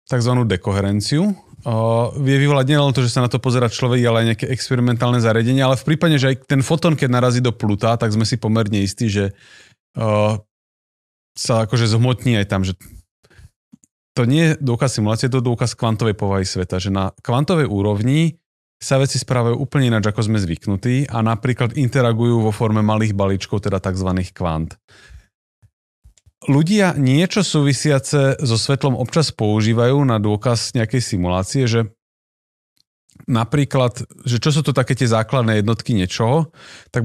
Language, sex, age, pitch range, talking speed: Slovak, male, 30-49, 110-135 Hz, 160 wpm